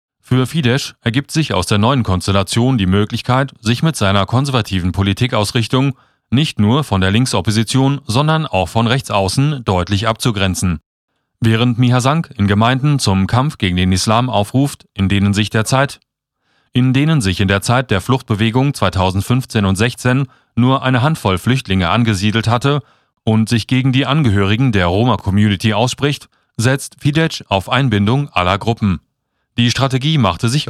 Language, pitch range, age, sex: German, 100-135 Hz, 30-49, male